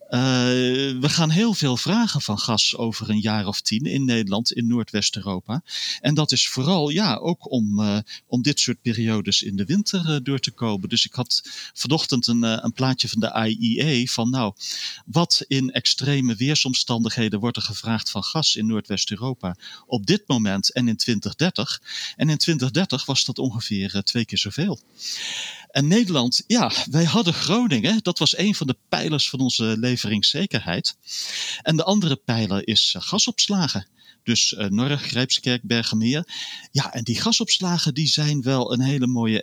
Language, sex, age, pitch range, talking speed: Dutch, male, 40-59, 110-150 Hz, 165 wpm